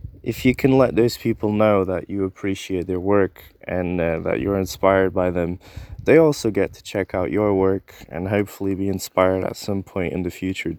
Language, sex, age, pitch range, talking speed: English, male, 20-39, 95-115 Hz, 205 wpm